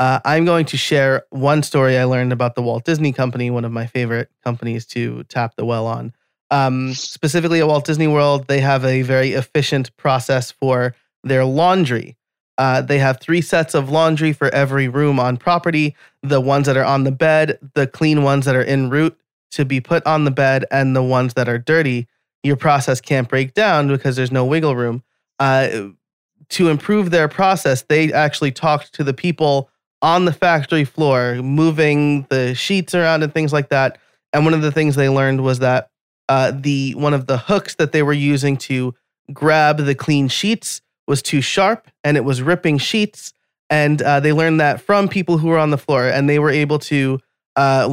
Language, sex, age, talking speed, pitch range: English, male, 20-39, 200 wpm, 130-155 Hz